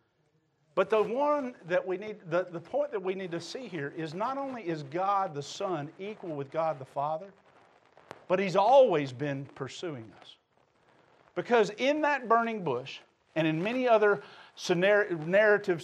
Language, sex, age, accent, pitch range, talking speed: English, male, 50-69, American, 160-230 Hz, 165 wpm